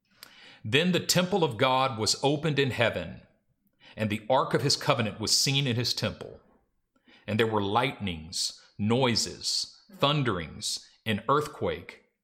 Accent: American